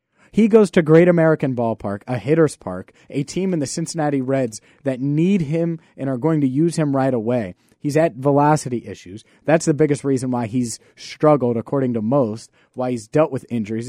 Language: English